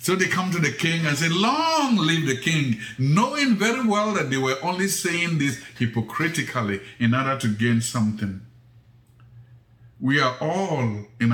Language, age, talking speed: English, 60-79, 165 wpm